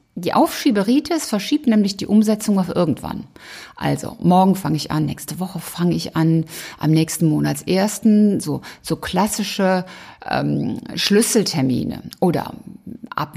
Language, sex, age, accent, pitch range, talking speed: German, female, 50-69, German, 175-220 Hz, 125 wpm